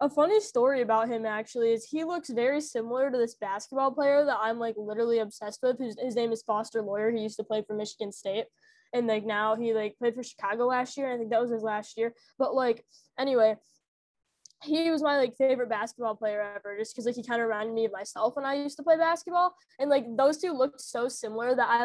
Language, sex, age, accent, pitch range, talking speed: English, female, 10-29, American, 220-275 Hz, 240 wpm